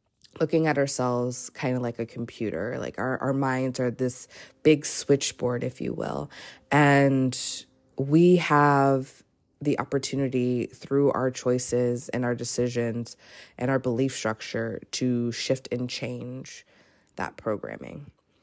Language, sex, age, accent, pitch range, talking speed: English, female, 20-39, American, 125-140 Hz, 130 wpm